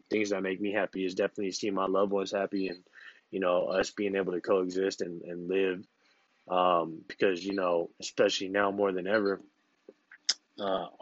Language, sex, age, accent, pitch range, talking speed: English, male, 20-39, American, 95-105 Hz, 180 wpm